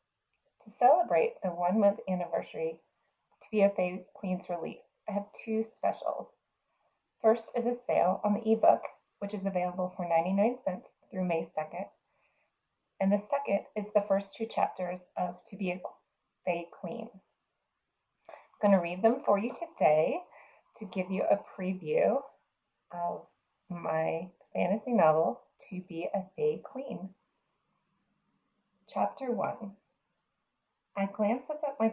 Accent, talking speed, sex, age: American, 140 wpm, female, 20-39